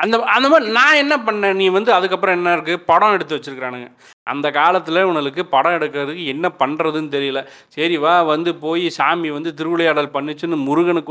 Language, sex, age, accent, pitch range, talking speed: Tamil, male, 30-49, native, 140-180 Hz, 165 wpm